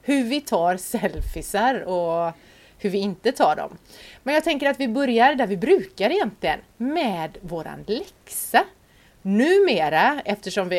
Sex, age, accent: female, 30-49, native